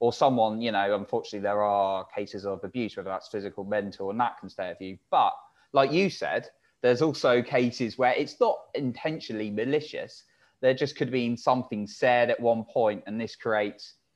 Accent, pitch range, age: British, 100-125 Hz, 20-39